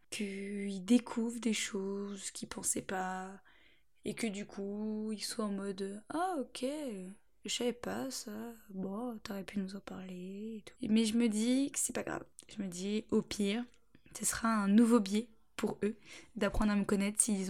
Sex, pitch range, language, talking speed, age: female, 200-245 Hz, French, 200 wpm, 10-29